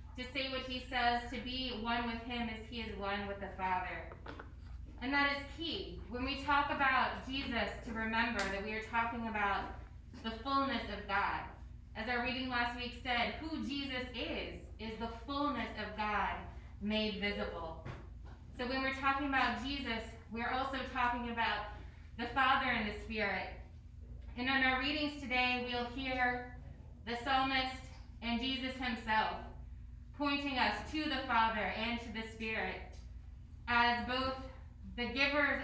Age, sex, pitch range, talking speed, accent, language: 20-39, female, 215-255 Hz, 155 wpm, American, English